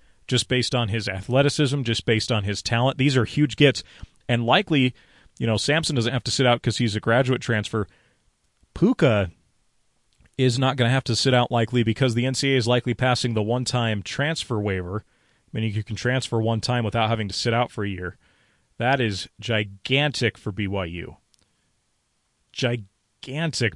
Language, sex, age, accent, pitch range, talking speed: English, male, 30-49, American, 110-130 Hz, 175 wpm